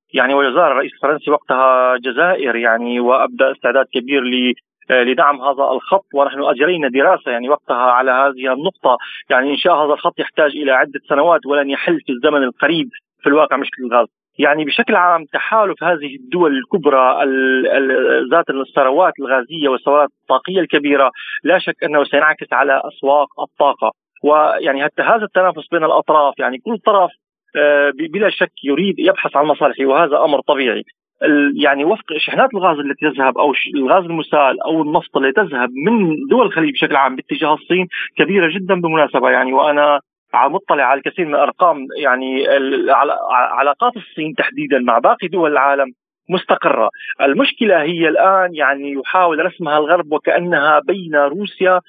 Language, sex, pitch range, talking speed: Arabic, male, 135-175 Hz, 145 wpm